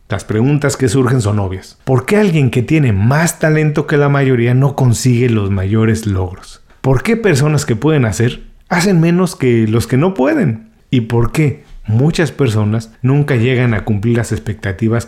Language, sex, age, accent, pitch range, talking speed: Spanish, male, 40-59, Mexican, 110-145 Hz, 180 wpm